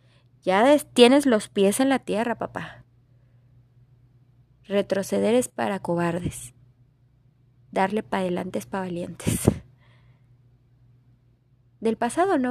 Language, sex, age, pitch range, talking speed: Spanish, female, 20-39, 125-205 Hz, 100 wpm